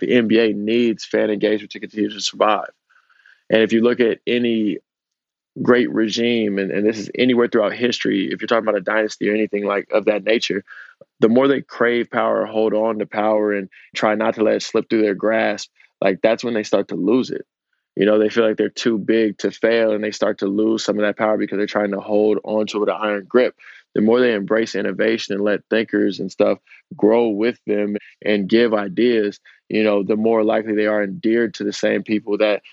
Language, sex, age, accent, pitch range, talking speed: English, male, 20-39, American, 105-115 Hz, 220 wpm